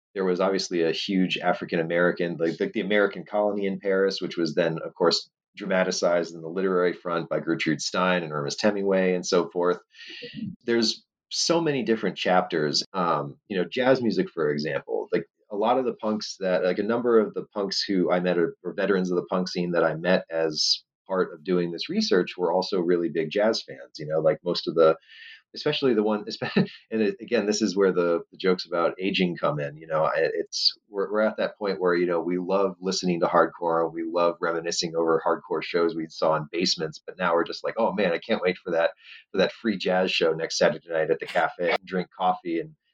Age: 30-49